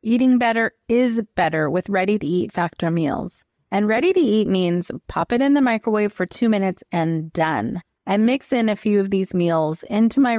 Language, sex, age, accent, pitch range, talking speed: English, female, 30-49, American, 185-235 Hz, 180 wpm